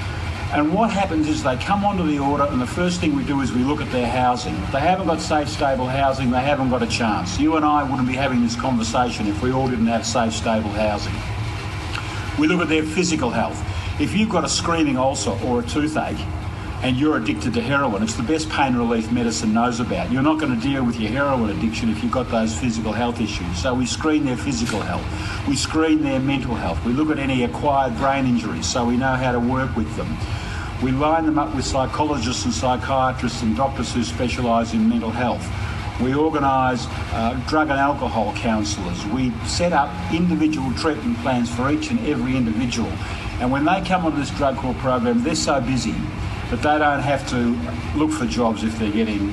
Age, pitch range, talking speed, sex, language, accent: 50-69, 110-140 Hz, 210 wpm, male, English, Australian